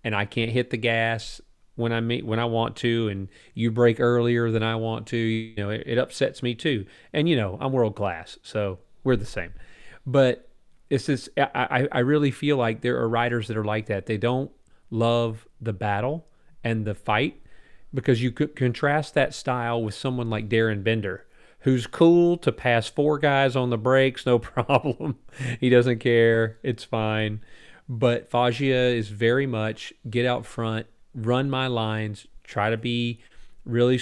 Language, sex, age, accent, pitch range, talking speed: English, male, 30-49, American, 110-130 Hz, 185 wpm